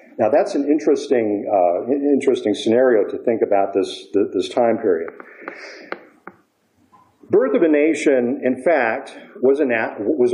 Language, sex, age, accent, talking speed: English, male, 50-69, American, 145 wpm